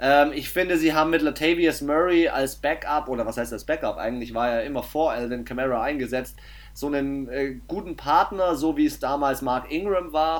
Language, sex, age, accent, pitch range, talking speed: German, male, 30-49, German, 130-170 Hz, 200 wpm